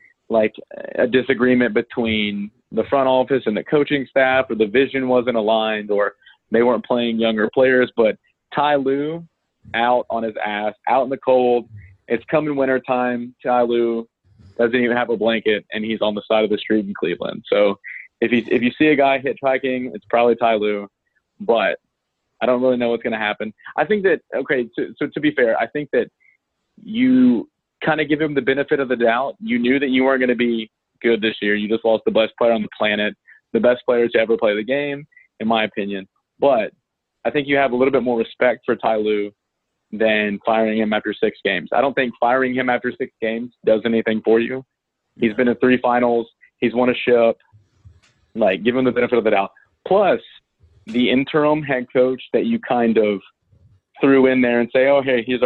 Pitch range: 110-130 Hz